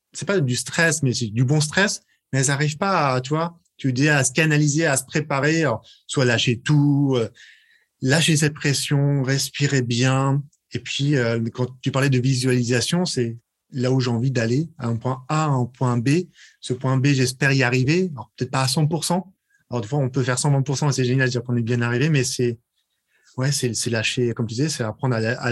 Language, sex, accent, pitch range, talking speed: French, male, French, 125-150 Hz, 215 wpm